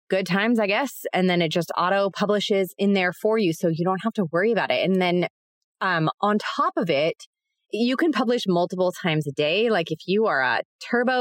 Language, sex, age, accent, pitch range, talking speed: English, female, 20-39, American, 175-240 Hz, 225 wpm